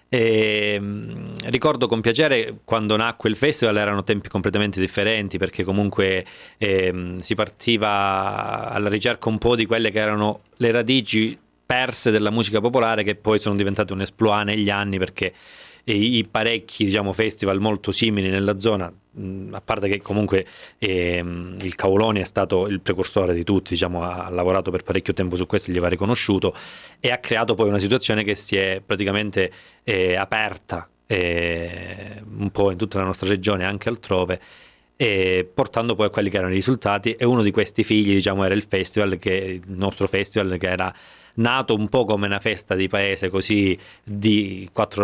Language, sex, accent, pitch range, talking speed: Italian, male, native, 95-110 Hz, 165 wpm